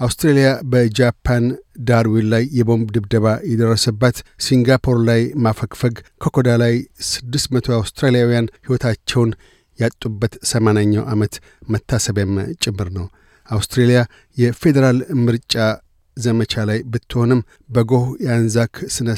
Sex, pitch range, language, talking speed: male, 110-125 Hz, Amharic, 95 wpm